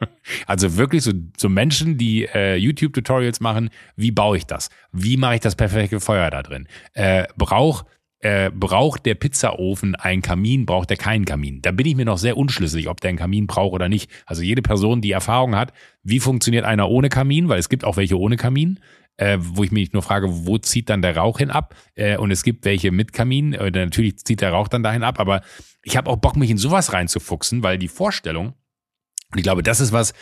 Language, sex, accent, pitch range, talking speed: German, male, German, 95-125 Hz, 220 wpm